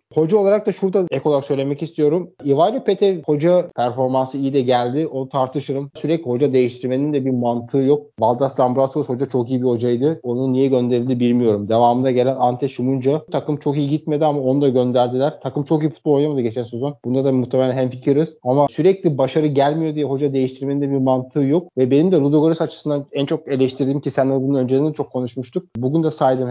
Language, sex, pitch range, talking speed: Turkish, male, 125-150 Hz, 195 wpm